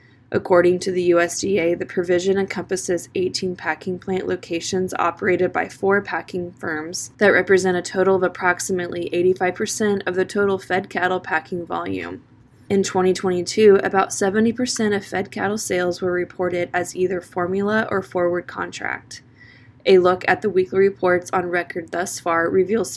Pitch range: 175-195 Hz